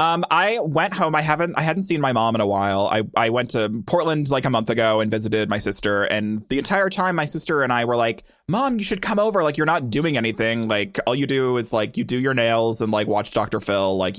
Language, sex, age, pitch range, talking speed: English, male, 20-39, 115-170 Hz, 265 wpm